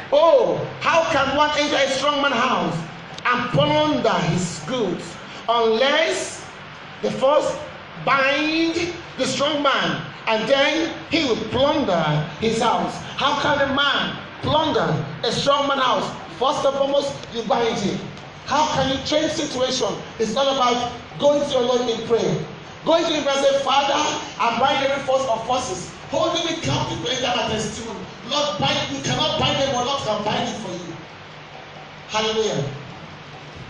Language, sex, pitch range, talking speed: English, male, 225-285 Hz, 145 wpm